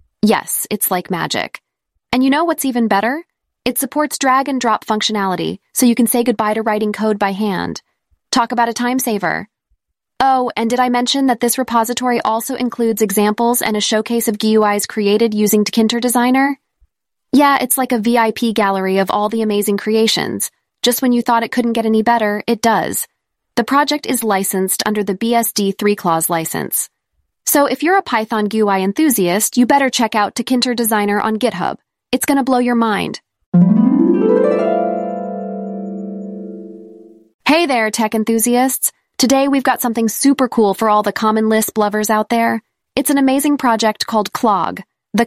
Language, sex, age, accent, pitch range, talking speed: English, female, 20-39, American, 210-250 Hz, 165 wpm